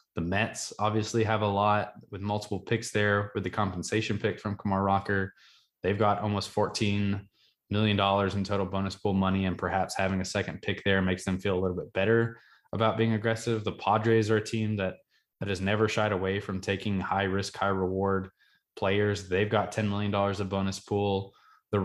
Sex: male